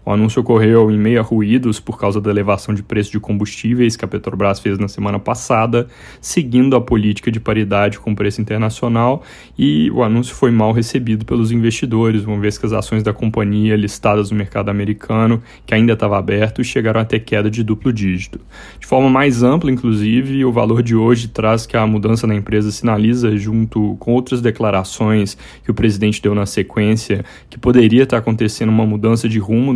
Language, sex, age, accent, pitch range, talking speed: Portuguese, male, 20-39, Brazilian, 105-120 Hz, 190 wpm